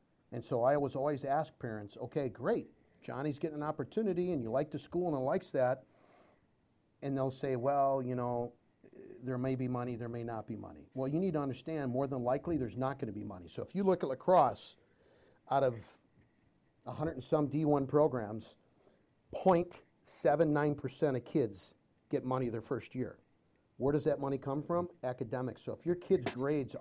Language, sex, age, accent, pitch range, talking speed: English, male, 50-69, American, 125-150 Hz, 185 wpm